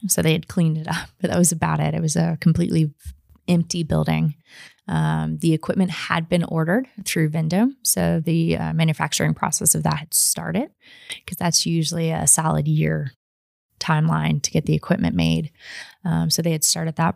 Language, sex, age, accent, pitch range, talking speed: English, female, 20-39, American, 160-180 Hz, 180 wpm